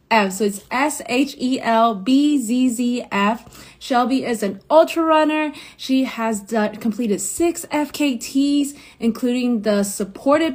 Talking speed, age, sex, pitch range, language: 100 wpm, 20-39, female, 205-260 Hz, English